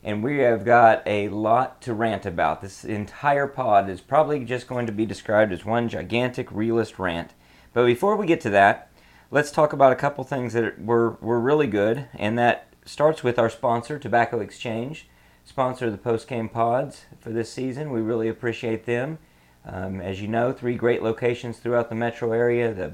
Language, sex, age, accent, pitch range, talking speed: English, male, 40-59, American, 100-120 Hz, 190 wpm